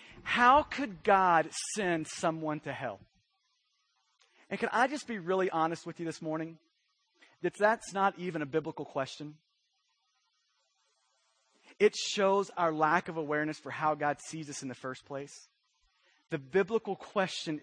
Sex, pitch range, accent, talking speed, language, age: male, 130-180 Hz, American, 145 wpm, English, 30-49